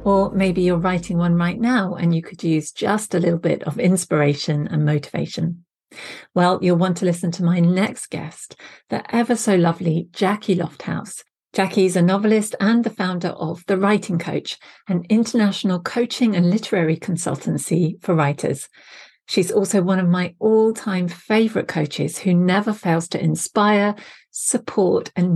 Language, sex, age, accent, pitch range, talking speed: English, female, 40-59, British, 170-210 Hz, 160 wpm